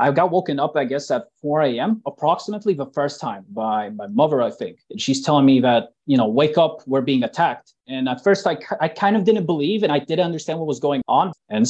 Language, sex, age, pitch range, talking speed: English, male, 30-49, 130-160 Hz, 245 wpm